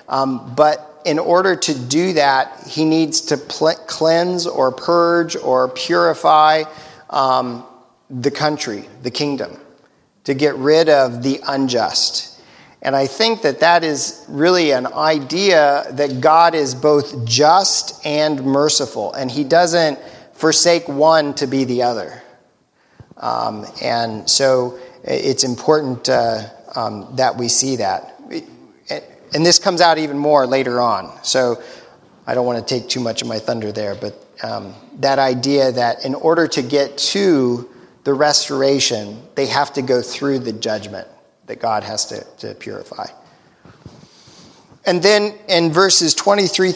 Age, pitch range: 40-59, 130-160 Hz